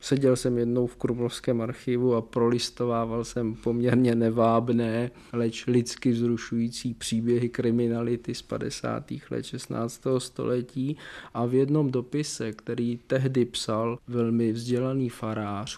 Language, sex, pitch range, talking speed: Czech, male, 115-135 Hz, 120 wpm